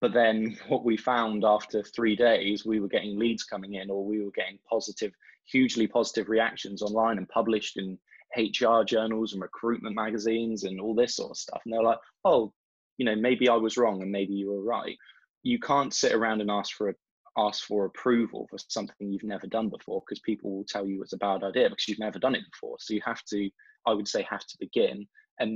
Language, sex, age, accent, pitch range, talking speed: English, male, 20-39, British, 100-115 Hz, 225 wpm